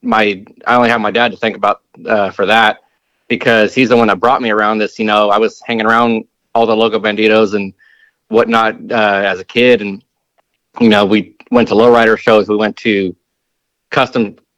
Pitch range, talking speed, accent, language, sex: 105-120 Hz, 200 wpm, American, English, male